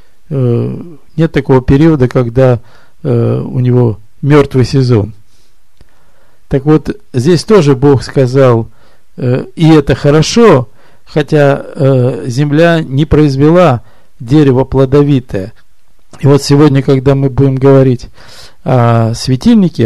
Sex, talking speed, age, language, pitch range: male, 95 wpm, 50-69, Russian, 115-160 Hz